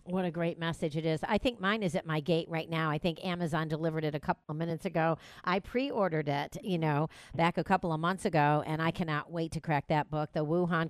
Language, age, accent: English, 50-69, American